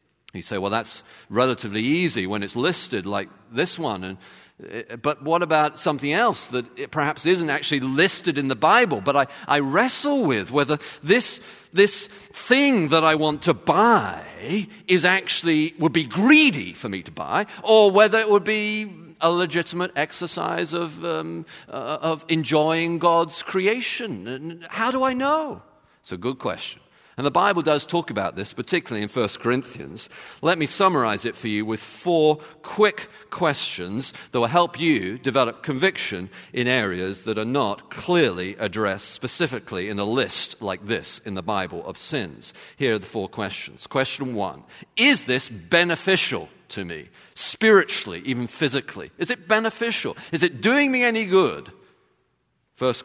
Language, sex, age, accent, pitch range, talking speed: English, male, 50-69, British, 130-190 Hz, 160 wpm